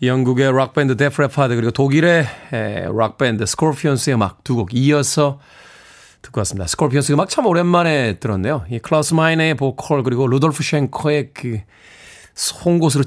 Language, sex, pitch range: Korean, male, 110-165 Hz